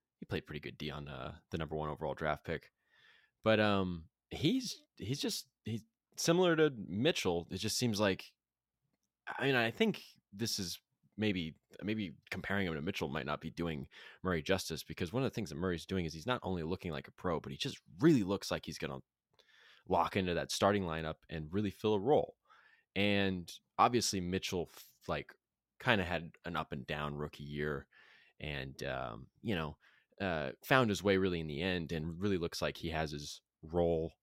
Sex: male